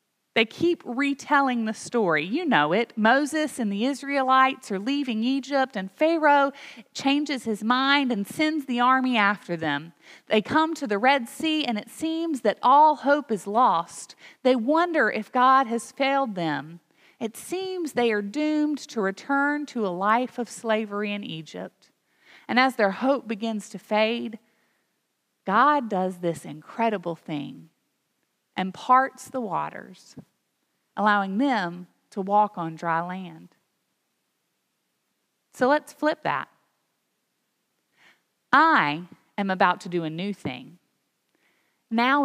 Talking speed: 140 wpm